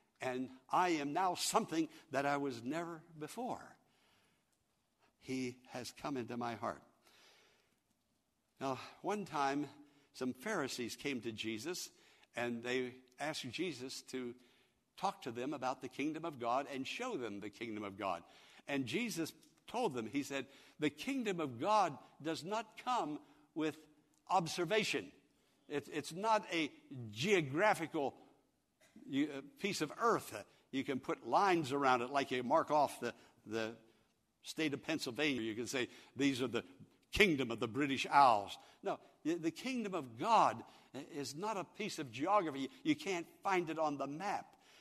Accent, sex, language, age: American, male, English, 60-79